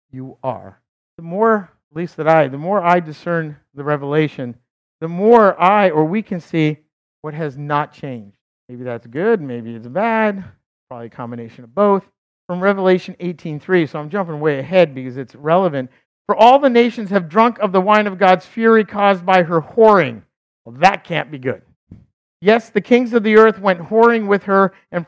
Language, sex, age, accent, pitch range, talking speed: English, male, 50-69, American, 140-195 Hz, 190 wpm